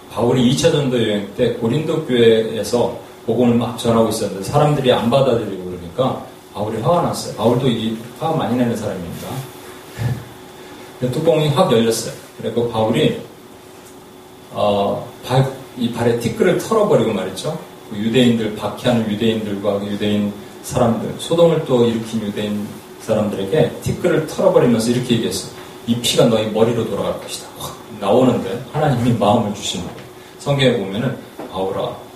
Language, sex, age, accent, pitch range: Korean, male, 40-59, native, 110-130 Hz